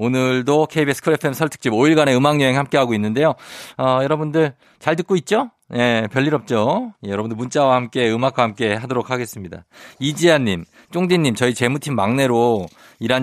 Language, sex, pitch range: Korean, male, 105-150 Hz